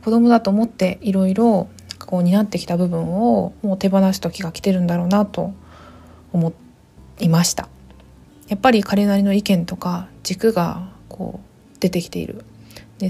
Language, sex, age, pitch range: Japanese, female, 20-39, 170-210 Hz